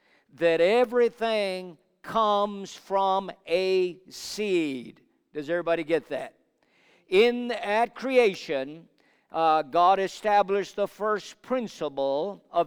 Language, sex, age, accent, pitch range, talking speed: English, male, 50-69, American, 175-230 Hz, 95 wpm